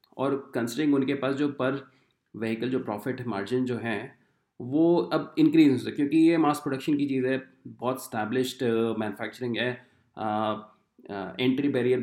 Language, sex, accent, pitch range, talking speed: Hindi, male, native, 120-155 Hz, 165 wpm